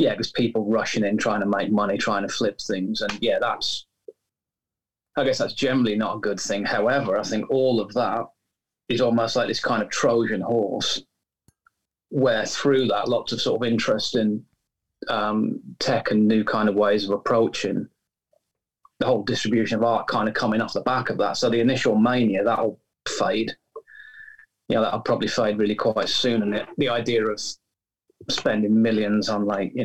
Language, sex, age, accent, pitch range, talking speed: English, male, 30-49, British, 105-120 Hz, 185 wpm